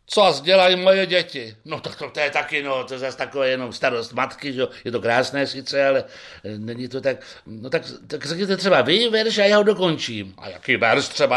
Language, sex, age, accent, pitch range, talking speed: Czech, male, 60-79, native, 130-195 Hz, 225 wpm